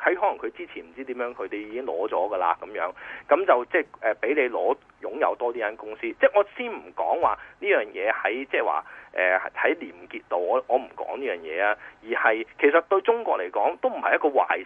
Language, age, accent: Chinese, 30-49, native